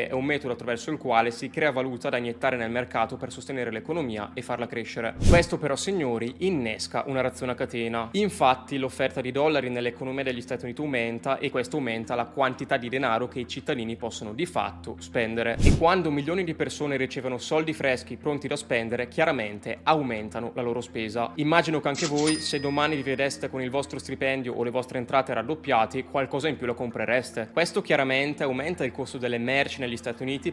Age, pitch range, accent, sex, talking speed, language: 20-39, 120-145 Hz, native, male, 190 wpm, Italian